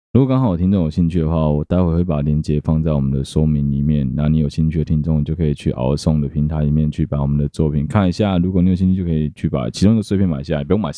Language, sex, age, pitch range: Chinese, male, 20-39, 75-95 Hz